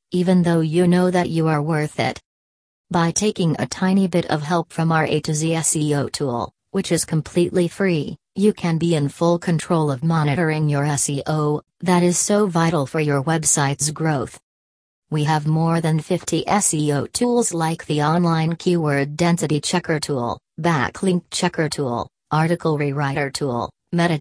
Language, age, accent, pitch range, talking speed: English, 40-59, American, 145-175 Hz, 165 wpm